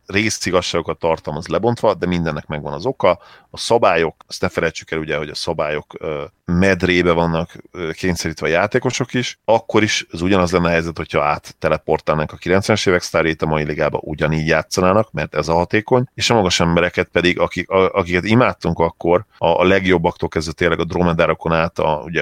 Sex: male